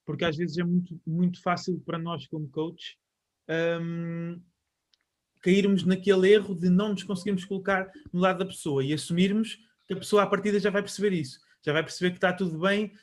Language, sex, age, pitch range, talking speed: Portuguese, male, 20-39, 155-195 Hz, 195 wpm